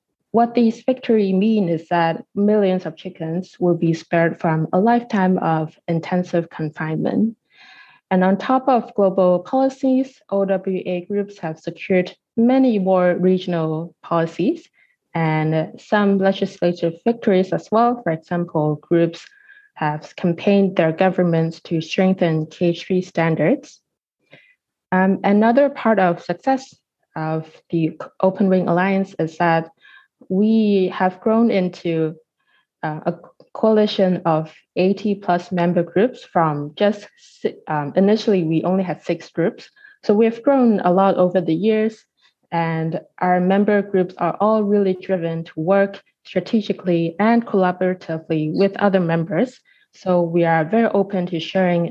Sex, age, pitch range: female, 20-39, 165-210 Hz